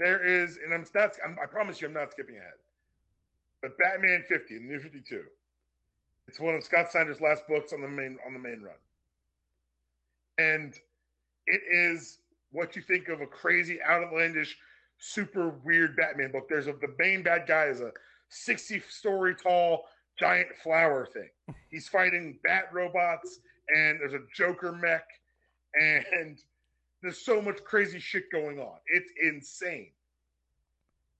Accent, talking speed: American, 150 wpm